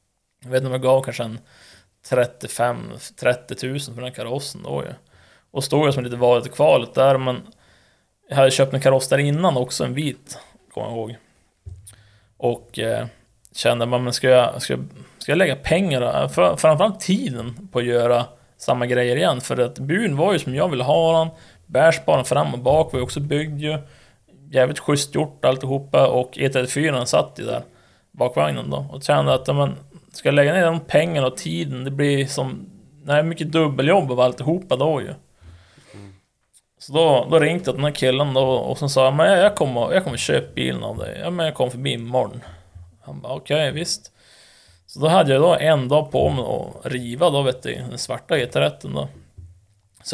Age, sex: 20-39, male